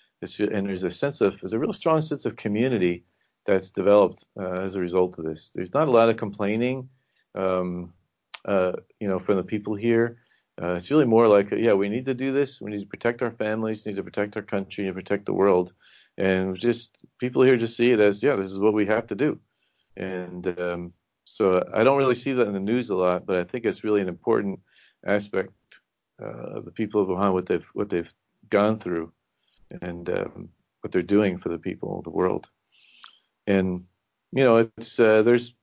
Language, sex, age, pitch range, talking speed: English, male, 40-59, 95-120 Hz, 210 wpm